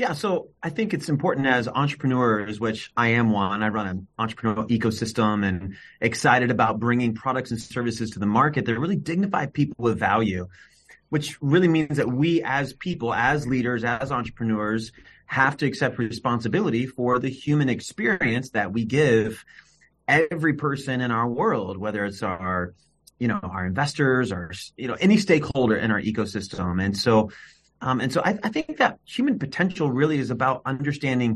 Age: 30-49